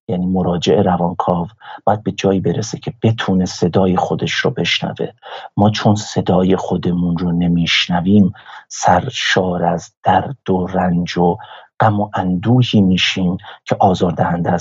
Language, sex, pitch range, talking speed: Persian, male, 90-110 Hz, 130 wpm